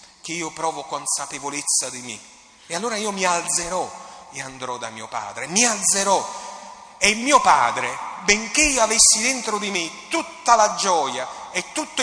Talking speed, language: 160 wpm, Italian